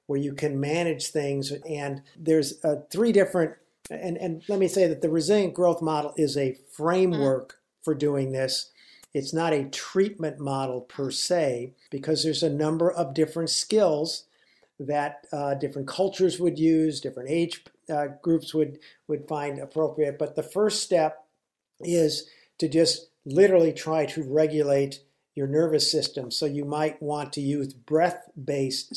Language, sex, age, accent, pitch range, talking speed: English, male, 50-69, American, 140-170 Hz, 155 wpm